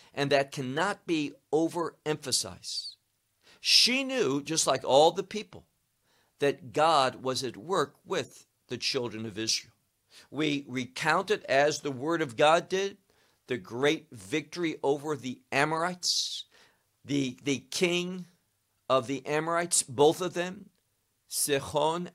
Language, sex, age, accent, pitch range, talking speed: English, male, 50-69, American, 135-195 Hz, 125 wpm